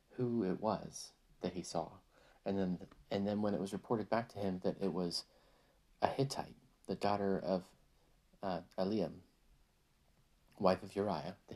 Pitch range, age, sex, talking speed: 90-110 Hz, 40-59, male, 160 wpm